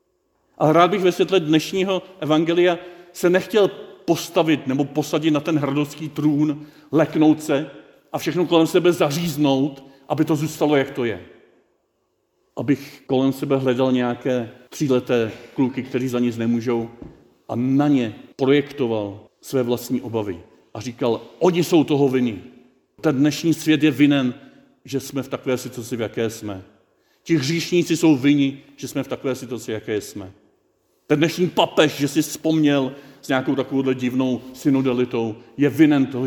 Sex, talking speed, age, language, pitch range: male, 150 wpm, 40-59, Czech, 125-155 Hz